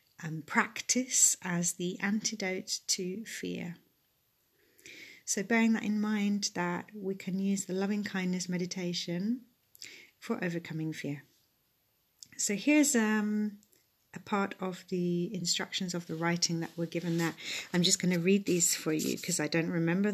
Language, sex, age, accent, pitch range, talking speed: English, female, 40-59, British, 175-215 Hz, 150 wpm